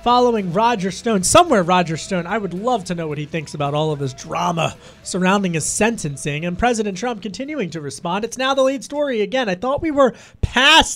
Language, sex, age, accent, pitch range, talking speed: English, male, 30-49, American, 180-240 Hz, 215 wpm